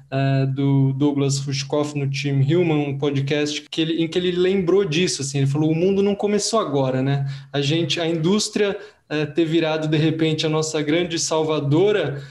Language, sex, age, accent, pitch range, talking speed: Portuguese, male, 20-39, Brazilian, 145-170 Hz, 185 wpm